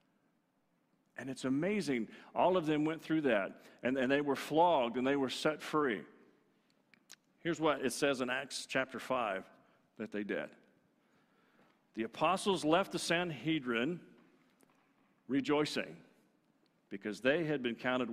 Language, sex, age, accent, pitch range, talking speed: English, male, 50-69, American, 115-160 Hz, 135 wpm